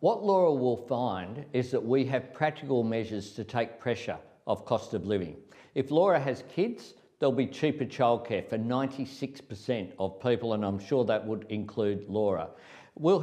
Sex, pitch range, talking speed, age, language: male, 115-145 Hz, 170 wpm, 50-69, English